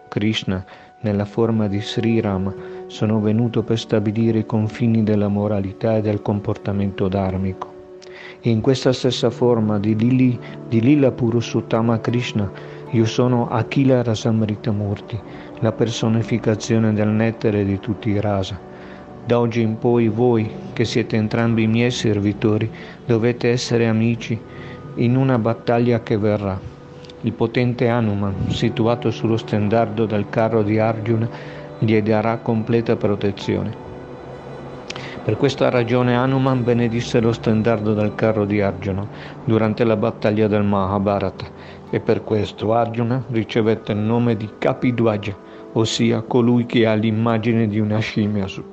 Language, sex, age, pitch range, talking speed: Italian, male, 50-69, 105-120 Hz, 135 wpm